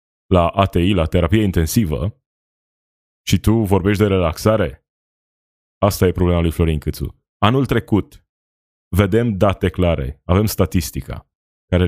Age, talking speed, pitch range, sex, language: 20-39, 120 wpm, 80-105 Hz, male, Romanian